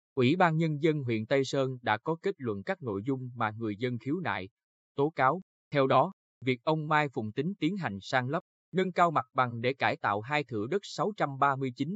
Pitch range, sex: 120-160 Hz, male